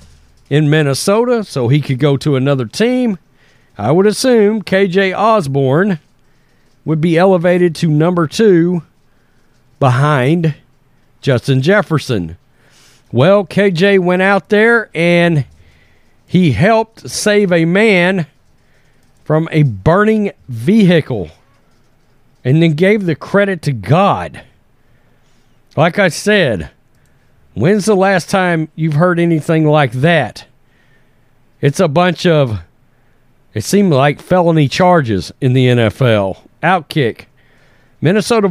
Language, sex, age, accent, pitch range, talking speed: English, male, 40-59, American, 135-190 Hz, 110 wpm